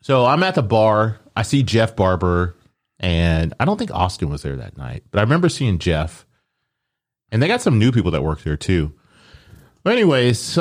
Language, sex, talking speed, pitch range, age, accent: English, male, 205 wpm, 85-120 Hz, 30-49, American